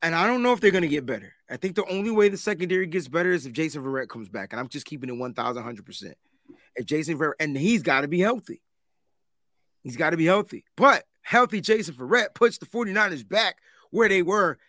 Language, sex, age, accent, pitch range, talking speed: English, male, 30-49, American, 165-225 Hz, 215 wpm